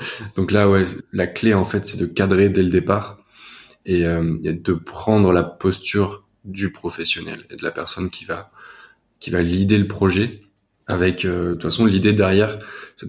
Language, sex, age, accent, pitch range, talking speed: French, male, 20-39, French, 90-105 Hz, 190 wpm